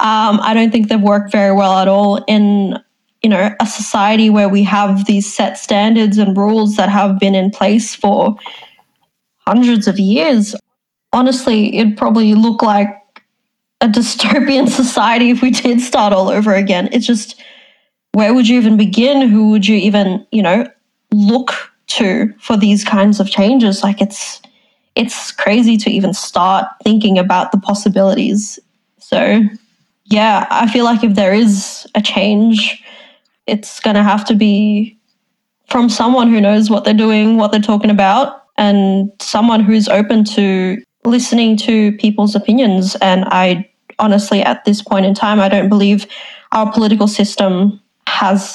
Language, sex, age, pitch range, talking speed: English, female, 20-39, 200-230 Hz, 160 wpm